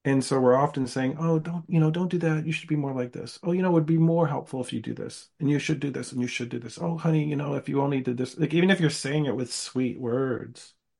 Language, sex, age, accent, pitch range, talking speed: English, male, 40-59, American, 120-150 Hz, 315 wpm